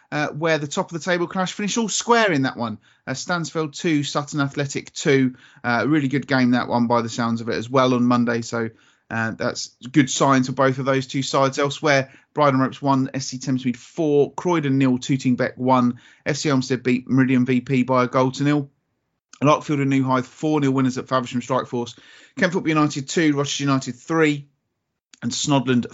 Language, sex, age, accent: English, male, 30-49, British